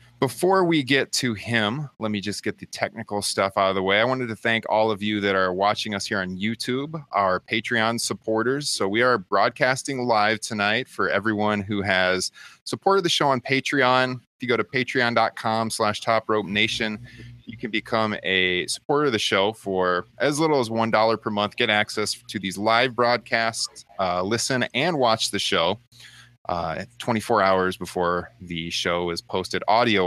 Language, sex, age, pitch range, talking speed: English, male, 30-49, 95-125 Hz, 185 wpm